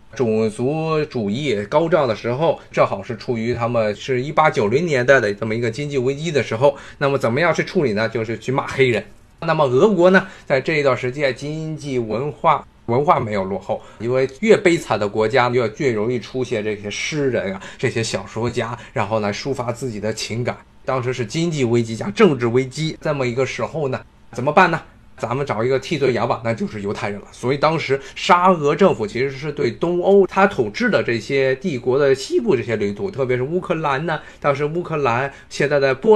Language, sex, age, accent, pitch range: Chinese, male, 20-39, native, 115-160 Hz